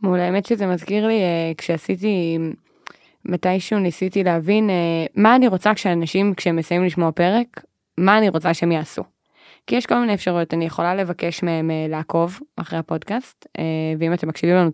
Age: 20-39